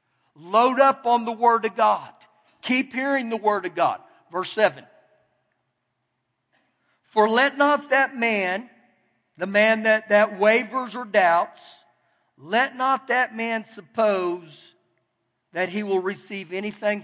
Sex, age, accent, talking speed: male, 50-69, American, 130 wpm